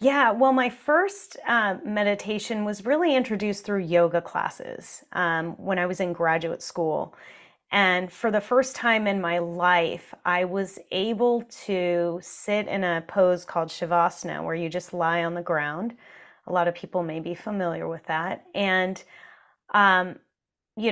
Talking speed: 160 wpm